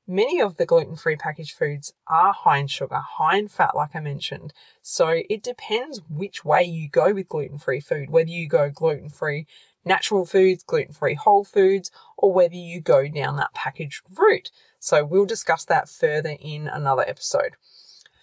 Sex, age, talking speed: female, 20-39, 170 wpm